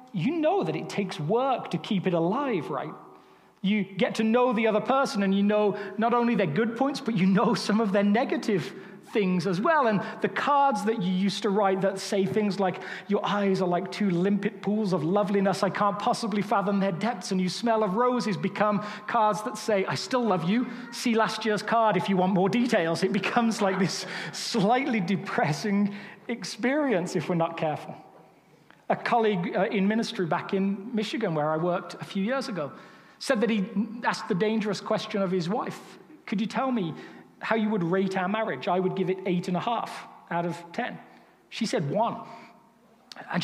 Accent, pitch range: British, 190-225 Hz